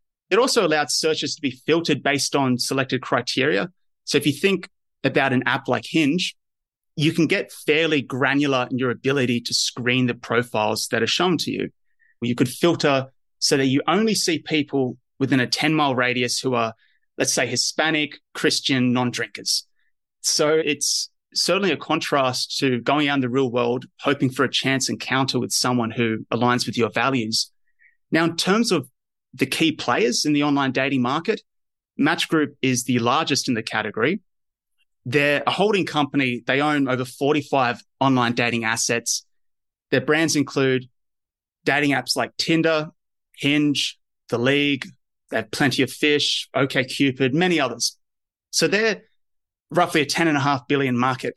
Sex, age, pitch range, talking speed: male, 30-49, 125-150 Hz, 160 wpm